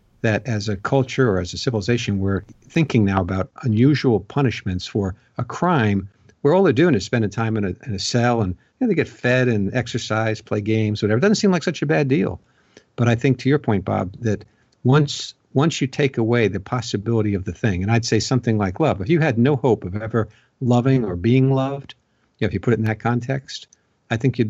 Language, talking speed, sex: English, 230 wpm, male